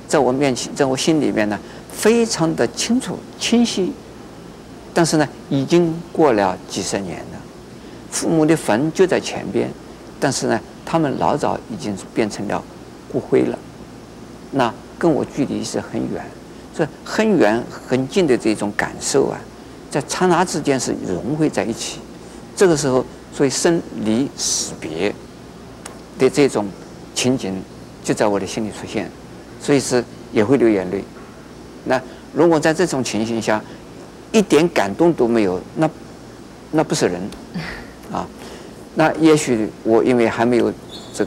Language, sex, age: Chinese, male, 50-69